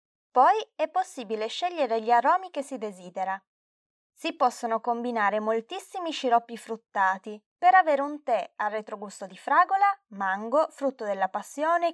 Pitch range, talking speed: 215-285 Hz, 135 wpm